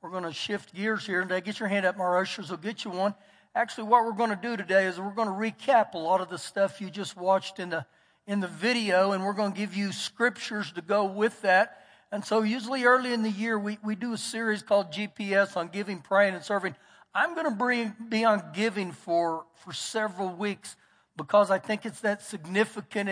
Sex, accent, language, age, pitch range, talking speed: male, American, English, 60-79, 190-225 Hz, 220 wpm